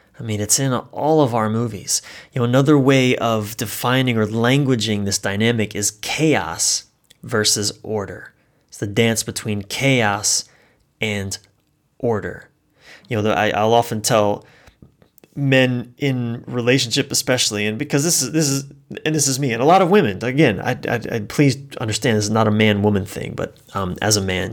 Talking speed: 175 wpm